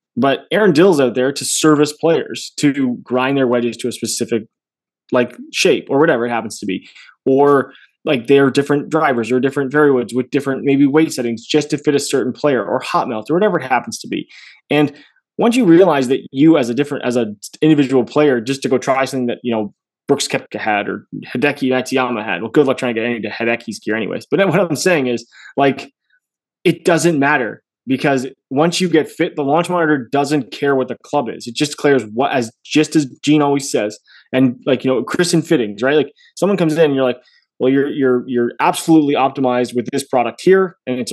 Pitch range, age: 125-150 Hz, 20-39